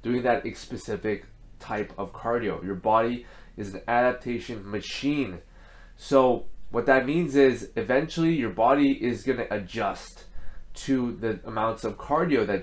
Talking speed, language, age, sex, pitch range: 145 wpm, English, 20-39, male, 110-135 Hz